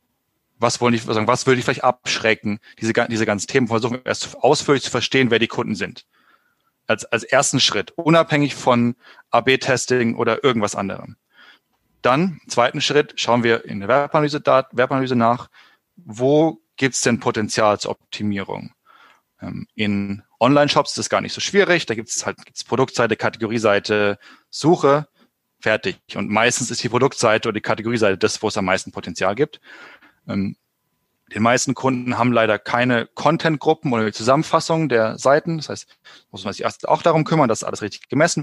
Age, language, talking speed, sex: 30-49, German, 165 wpm, male